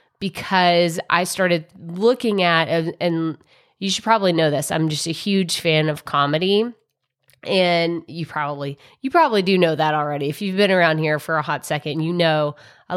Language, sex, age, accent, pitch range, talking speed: English, female, 20-39, American, 155-185 Hz, 180 wpm